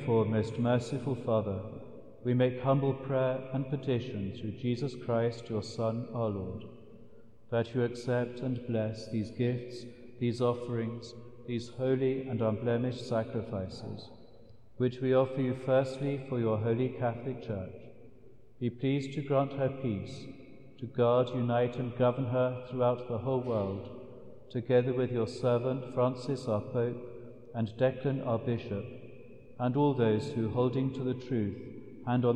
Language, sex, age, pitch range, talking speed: English, male, 50-69, 110-130 Hz, 145 wpm